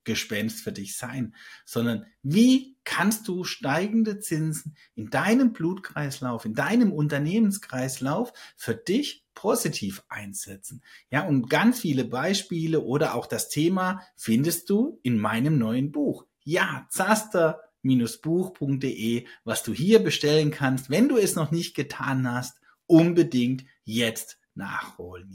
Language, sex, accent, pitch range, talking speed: German, male, German, 120-170 Hz, 125 wpm